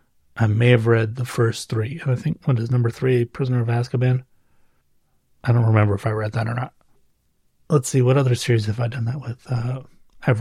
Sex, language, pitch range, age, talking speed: male, English, 110-130 Hz, 30-49, 215 wpm